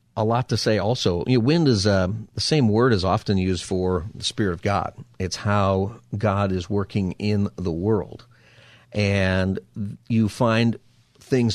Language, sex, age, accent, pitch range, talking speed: English, male, 40-59, American, 100-120 Hz, 160 wpm